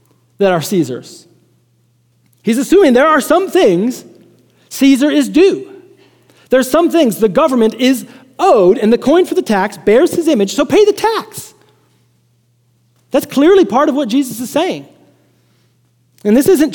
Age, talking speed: 40-59, 155 wpm